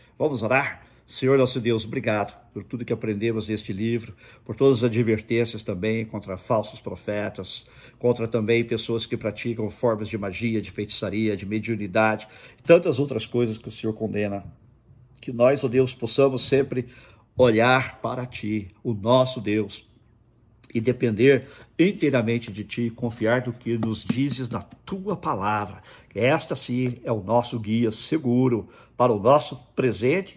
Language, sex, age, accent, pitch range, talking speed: Portuguese, male, 50-69, Brazilian, 110-125 Hz, 150 wpm